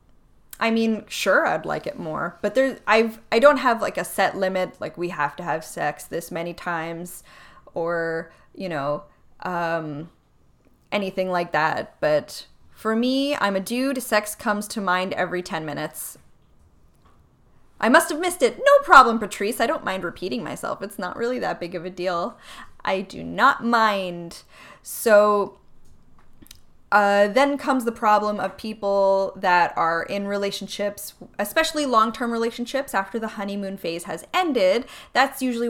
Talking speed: 160 wpm